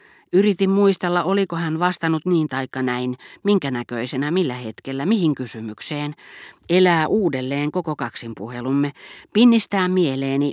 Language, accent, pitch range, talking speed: Finnish, native, 125-170 Hz, 120 wpm